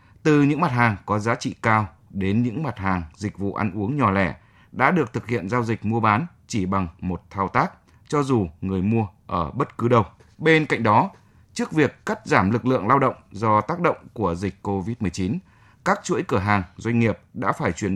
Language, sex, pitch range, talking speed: Vietnamese, male, 100-125 Hz, 215 wpm